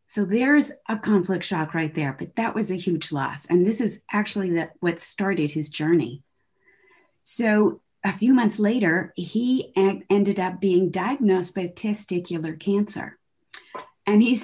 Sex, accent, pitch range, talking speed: female, American, 175-225 Hz, 160 wpm